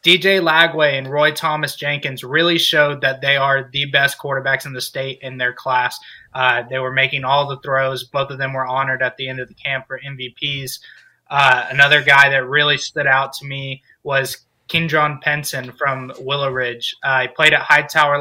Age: 20-39